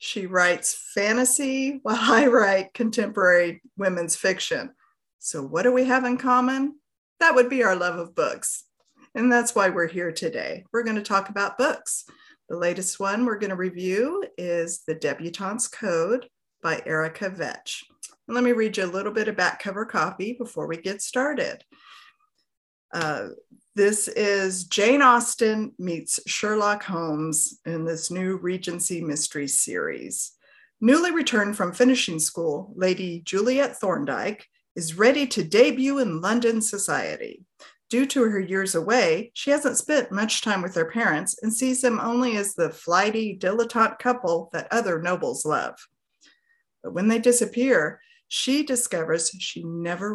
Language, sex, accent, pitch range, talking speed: English, female, American, 180-250 Hz, 150 wpm